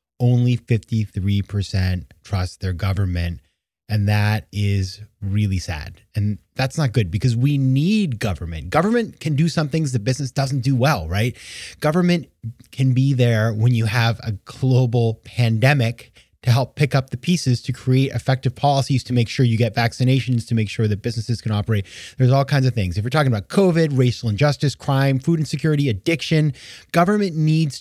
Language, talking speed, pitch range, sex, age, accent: English, 175 wpm, 105-140 Hz, male, 30-49, American